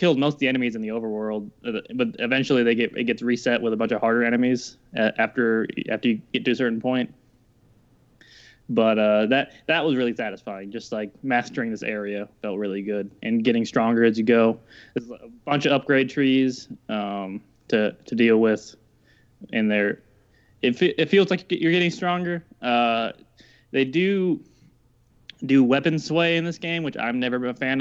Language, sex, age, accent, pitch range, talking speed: English, male, 20-39, American, 110-130 Hz, 185 wpm